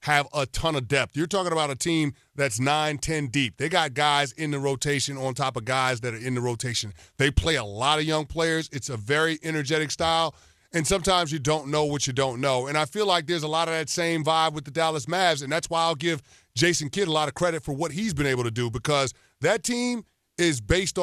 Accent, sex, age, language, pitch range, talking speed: American, male, 30-49, English, 135-165 Hz, 250 wpm